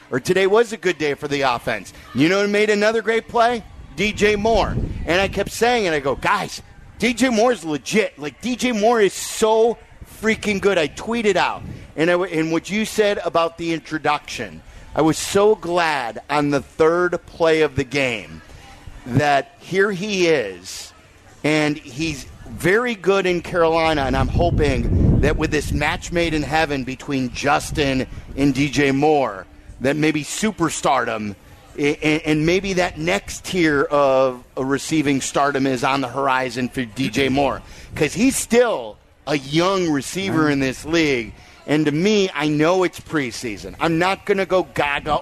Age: 50-69